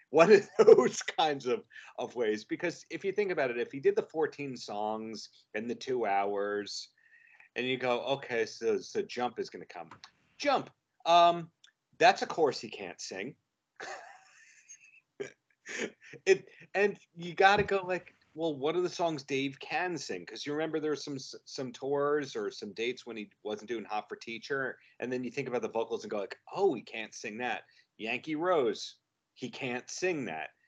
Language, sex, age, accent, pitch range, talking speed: English, male, 40-59, American, 115-195 Hz, 185 wpm